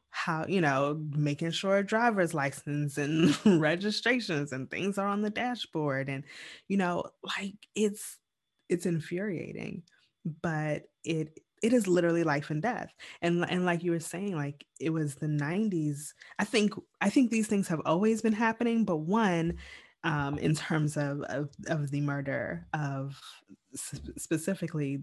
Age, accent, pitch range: 20-39, American, 145-185 Hz